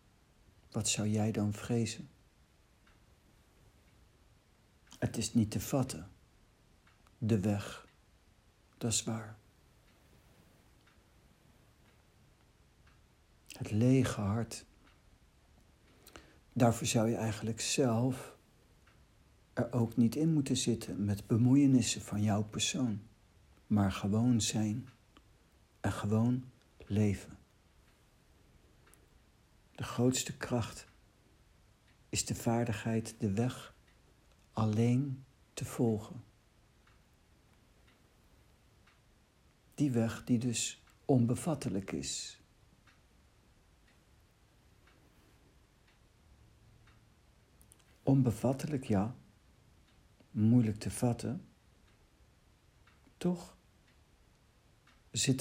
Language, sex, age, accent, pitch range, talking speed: Dutch, male, 60-79, Dutch, 100-120 Hz, 70 wpm